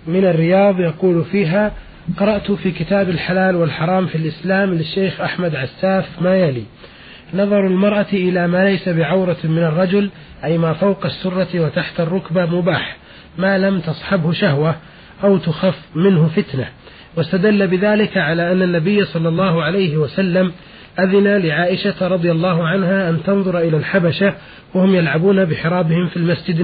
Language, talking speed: Arabic, 140 wpm